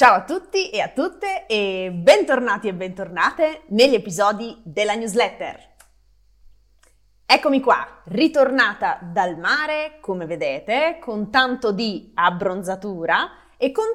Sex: female